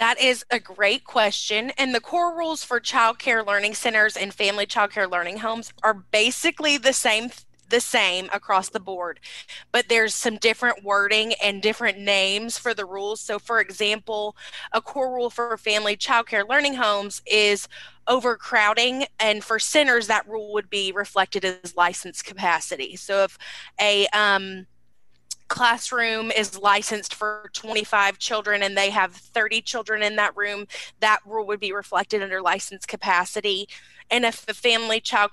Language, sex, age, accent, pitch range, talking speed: English, female, 20-39, American, 200-235 Hz, 165 wpm